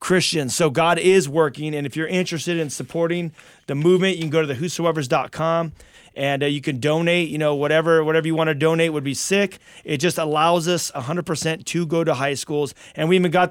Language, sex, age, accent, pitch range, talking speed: English, male, 30-49, American, 145-170 Hz, 225 wpm